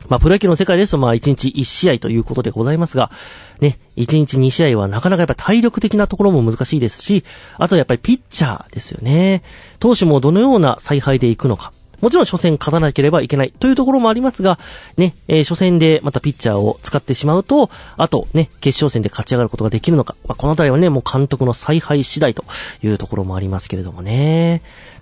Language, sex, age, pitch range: Japanese, male, 30-49, 115-175 Hz